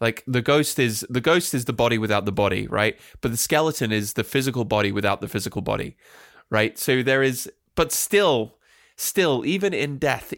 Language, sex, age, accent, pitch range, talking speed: English, male, 20-39, British, 110-145 Hz, 195 wpm